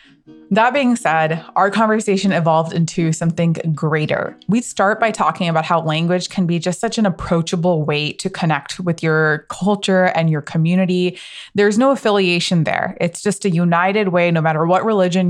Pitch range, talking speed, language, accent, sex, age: 165-195 Hz, 175 wpm, English, American, female, 20-39